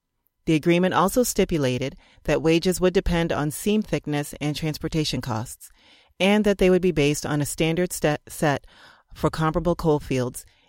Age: 30-49